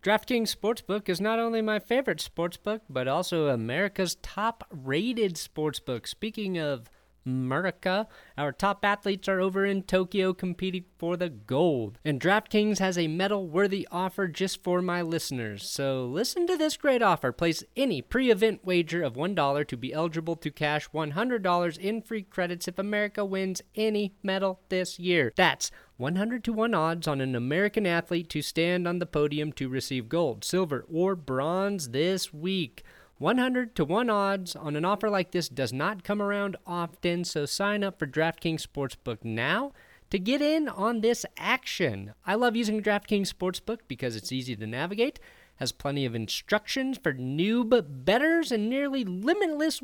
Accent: American